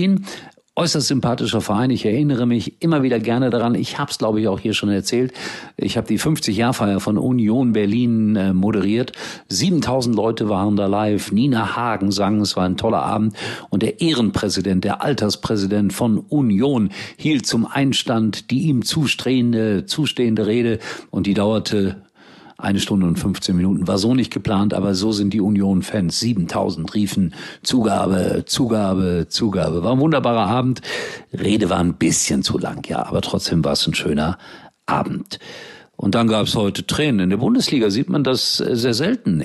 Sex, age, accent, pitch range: male, 50-69, German, 100-125 Hz